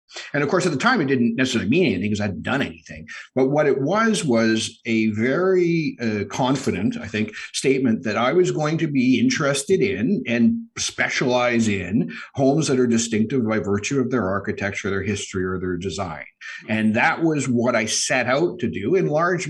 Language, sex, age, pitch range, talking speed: English, male, 50-69, 105-130 Hz, 195 wpm